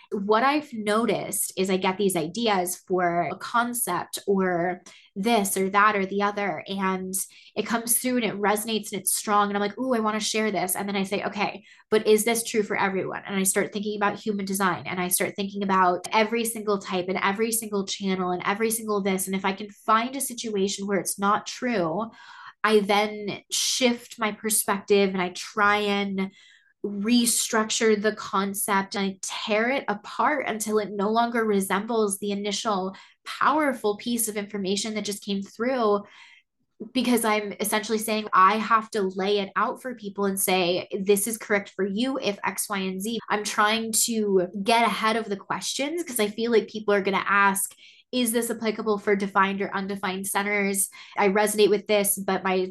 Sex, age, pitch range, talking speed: female, 20-39, 195-220 Hz, 190 wpm